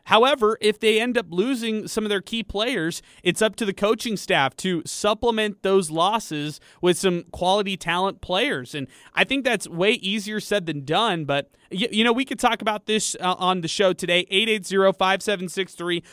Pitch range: 165-200 Hz